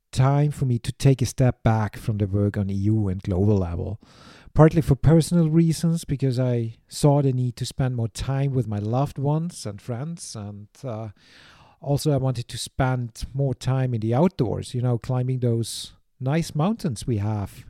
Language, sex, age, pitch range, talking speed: English, male, 40-59, 115-150 Hz, 185 wpm